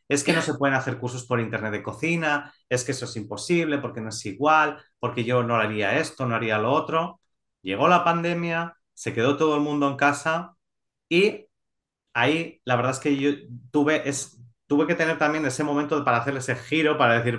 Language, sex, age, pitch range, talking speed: Spanish, male, 30-49, 120-160 Hz, 205 wpm